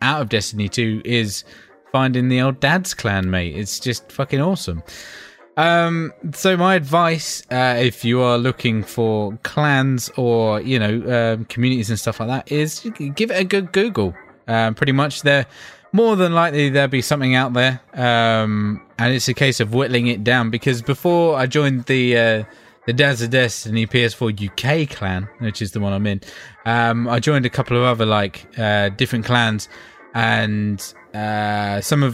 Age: 20-39